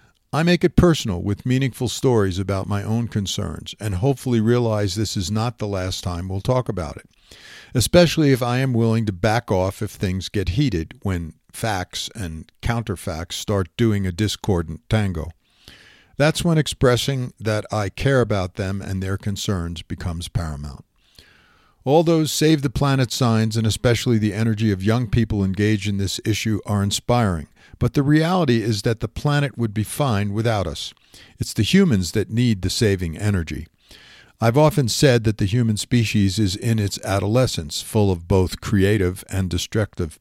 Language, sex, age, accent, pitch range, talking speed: English, male, 50-69, American, 100-125 Hz, 170 wpm